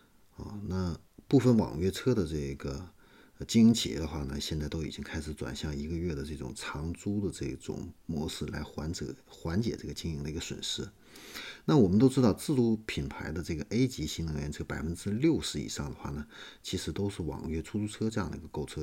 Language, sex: Chinese, male